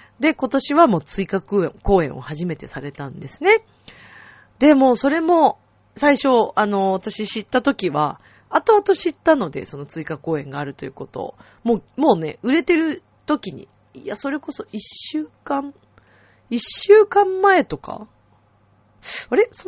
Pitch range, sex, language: 160-265 Hz, female, Japanese